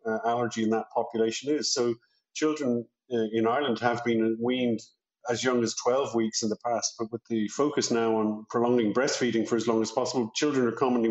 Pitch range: 110-130 Hz